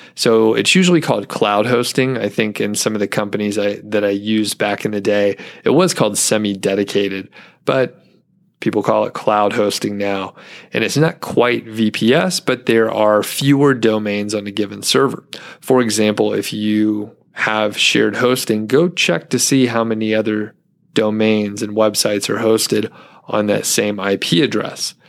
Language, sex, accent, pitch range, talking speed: English, male, American, 105-120 Hz, 165 wpm